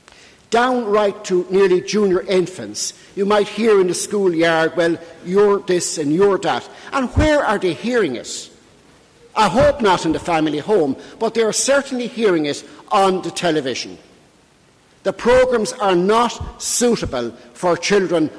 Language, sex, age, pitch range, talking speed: English, male, 60-79, 165-210 Hz, 150 wpm